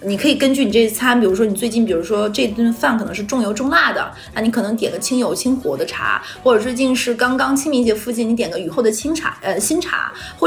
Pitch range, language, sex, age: 215-275 Hz, Chinese, female, 30-49